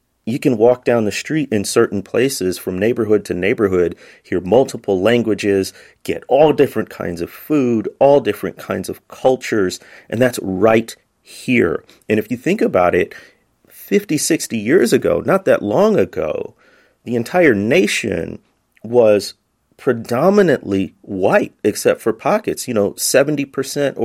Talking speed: 140 wpm